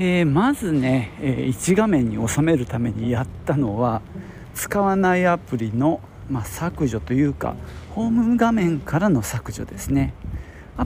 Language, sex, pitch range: Japanese, male, 110-145 Hz